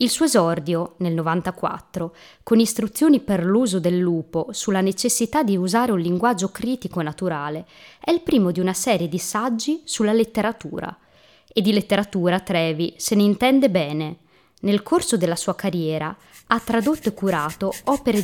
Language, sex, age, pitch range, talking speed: Italian, female, 20-39, 175-230 Hz, 155 wpm